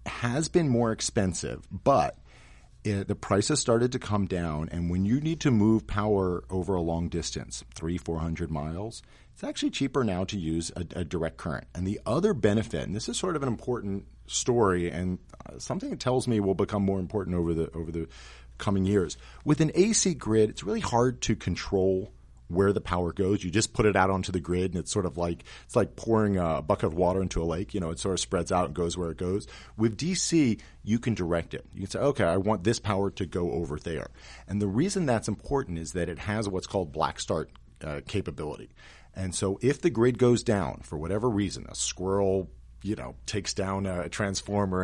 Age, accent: 40-59, American